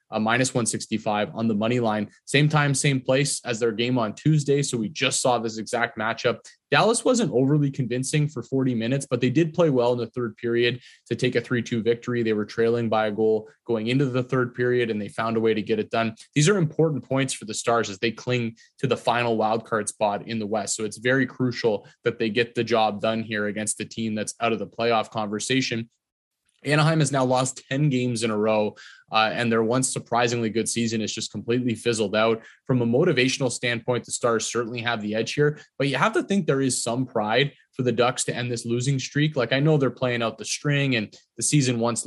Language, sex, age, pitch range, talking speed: English, male, 20-39, 110-130 Hz, 235 wpm